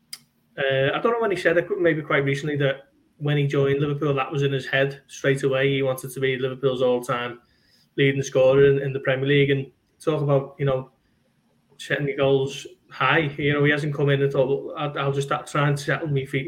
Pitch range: 135-150 Hz